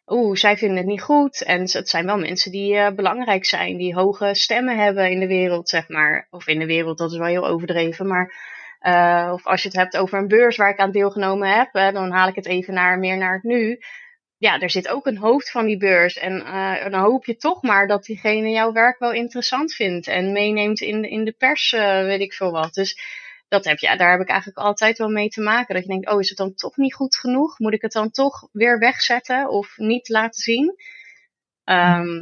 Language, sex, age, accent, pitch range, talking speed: Dutch, female, 20-39, Dutch, 180-220 Hz, 240 wpm